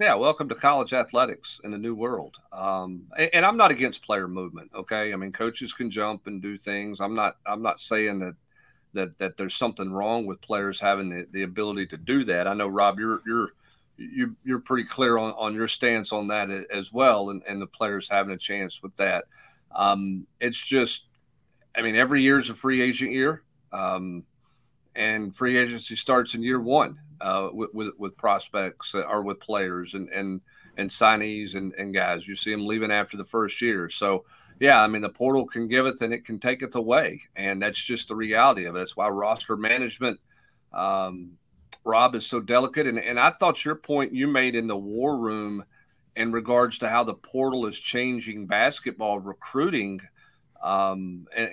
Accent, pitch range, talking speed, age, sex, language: American, 100-125 Hz, 200 wpm, 50-69, male, English